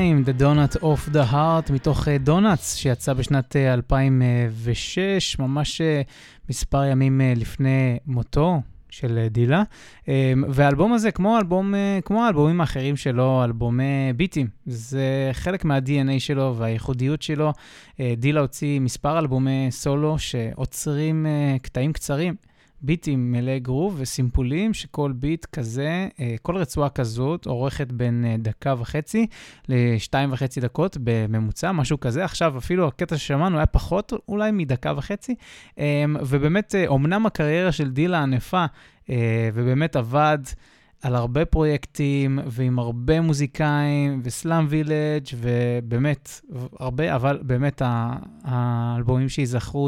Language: Hebrew